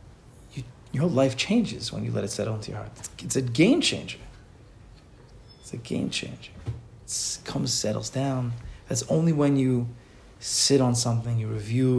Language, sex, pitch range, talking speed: English, male, 110-130 Hz, 170 wpm